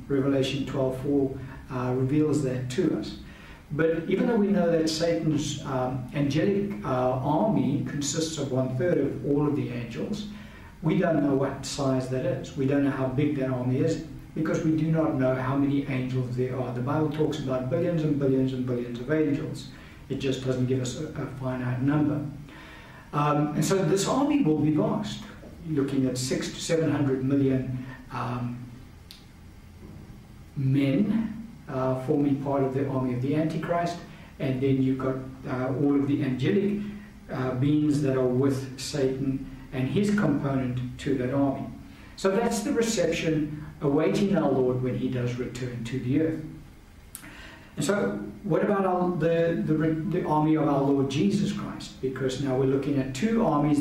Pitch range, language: 130-160 Hz, English